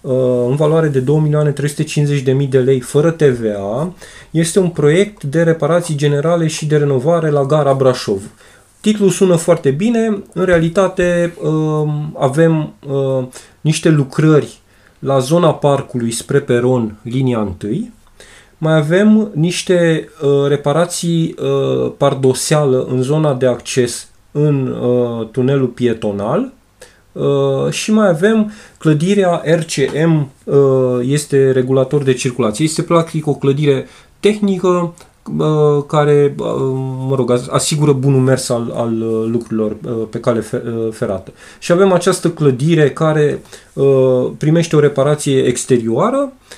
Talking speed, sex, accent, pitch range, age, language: 115 wpm, male, native, 130-165 Hz, 30-49, Romanian